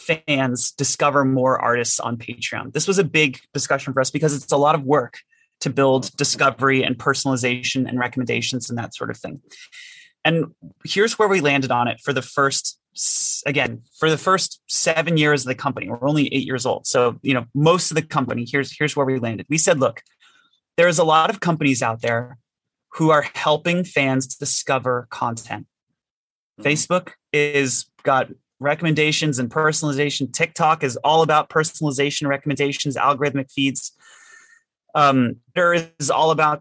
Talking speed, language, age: 170 wpm, German, 30-49